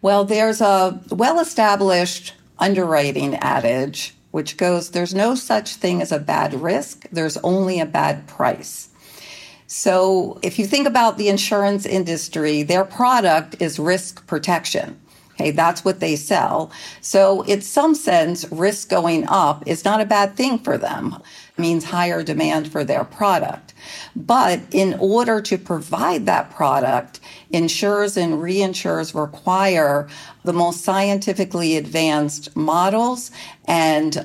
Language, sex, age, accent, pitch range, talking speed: English, female, 50-69, American, 160-200 Hz, 135 wpm